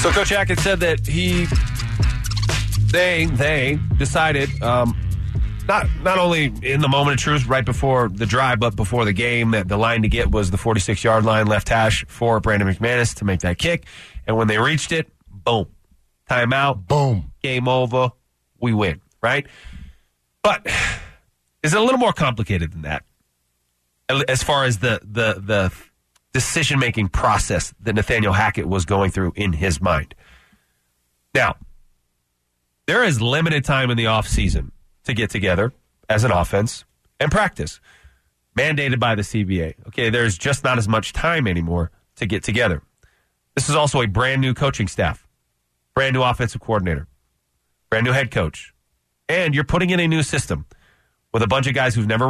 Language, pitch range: English, 90-130 Hz